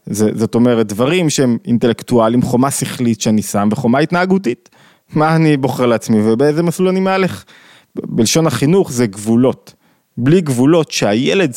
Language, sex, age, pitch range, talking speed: Hebrew, male, 20-39, 115-160 Hz, 140 wpm